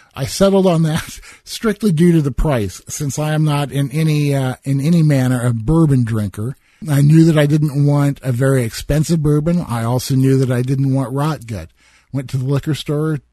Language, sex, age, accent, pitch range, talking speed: English, male, 50-69, American, 125-160 Hz, 205 wpm